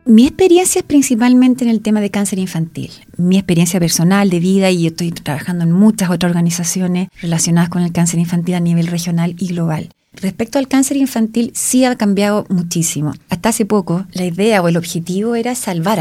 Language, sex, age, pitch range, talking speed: Spanish, female, 30-49, 170-215 Hz, 190 wpm